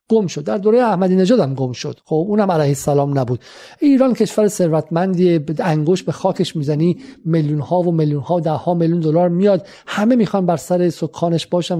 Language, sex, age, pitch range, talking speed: Persian, male, 50-69, 150-185 Hz, 180 wpm